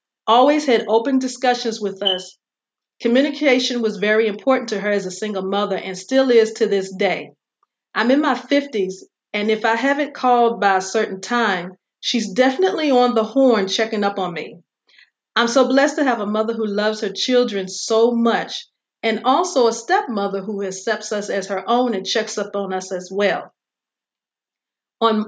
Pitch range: 195-240 Hz